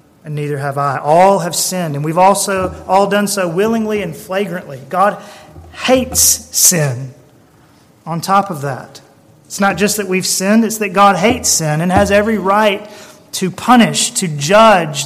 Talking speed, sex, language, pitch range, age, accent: 165 wpm, male, English, 155-210 Hz, 30-49, American